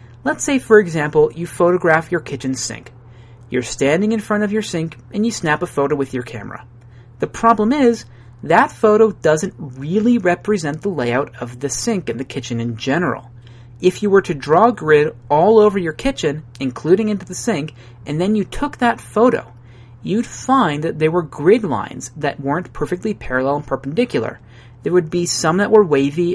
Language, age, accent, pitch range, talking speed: English, 30-49, American, 125-185 Hz, 190 wpm